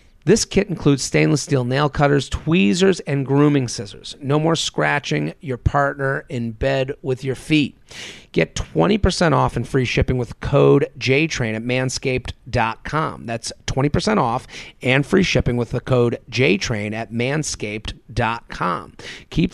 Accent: American